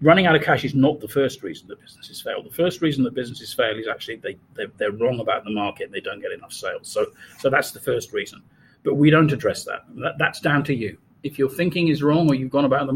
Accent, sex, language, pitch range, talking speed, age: British, male, English, 135-175 Hz, 275 wpm, 40-59